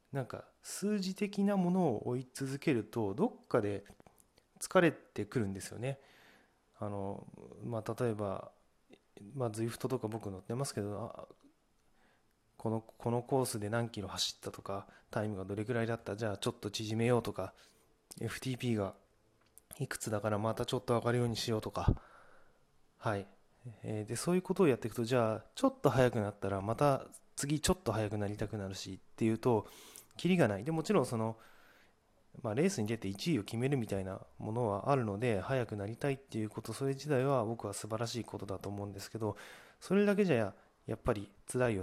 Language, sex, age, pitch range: Japanese, male, 20-39, 100-125 Hz